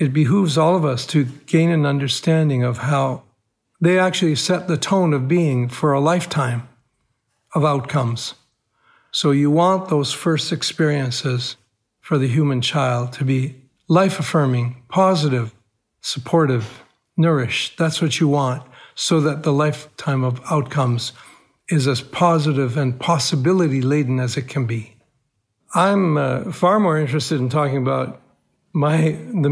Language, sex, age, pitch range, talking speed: English, male, 60-79, 130-160 Hz, 140 wpm